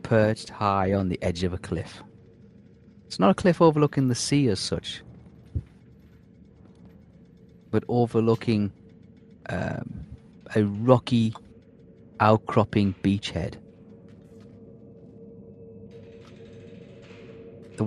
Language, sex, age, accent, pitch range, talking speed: English, male, 30-49, British, 95-115 Hz, 85 wpm